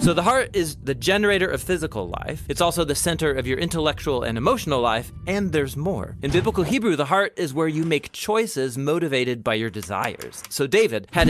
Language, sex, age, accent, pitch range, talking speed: English, male, 30-49, American, 120-175 Hz, 220 wpm